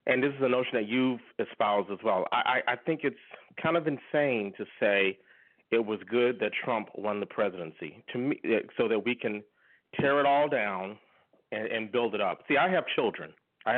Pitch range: 120-150 Hz